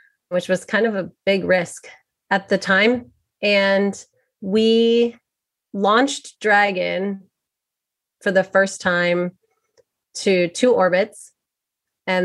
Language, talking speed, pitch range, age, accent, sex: English, 110 wpm, 175-205 Hz, 30-49, American, female